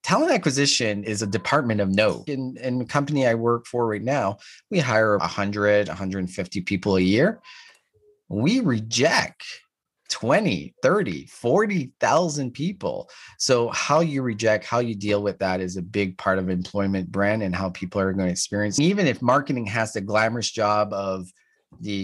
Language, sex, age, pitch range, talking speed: English, male, 30-49, 100-135 Hz, 165 wpm